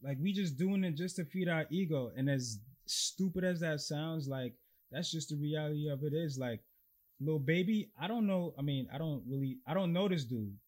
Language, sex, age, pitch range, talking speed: English, male, 20-39, 125-175 Hz, 230 wpm